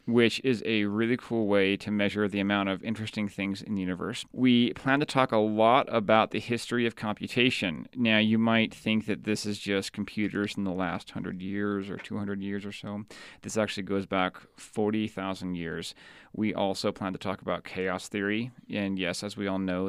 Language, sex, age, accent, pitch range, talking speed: English, male, 30-49, American, 100-110 Hz, 200 wpm